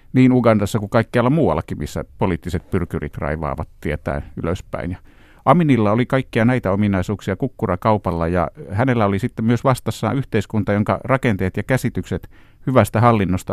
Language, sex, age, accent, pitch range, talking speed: Finnish, male, 50-69, native, 95-120 Hz, 135 wpm